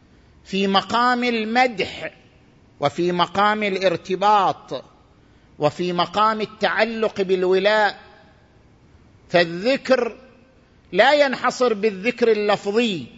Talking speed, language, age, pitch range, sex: 70 wpm, Arabic, 50-69, 185-245 Hz, male